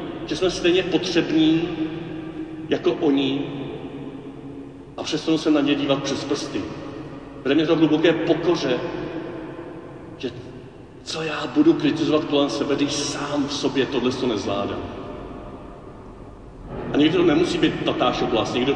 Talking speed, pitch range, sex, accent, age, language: 130 wpm, 125-160 Hz, male, native, 40-59, Czech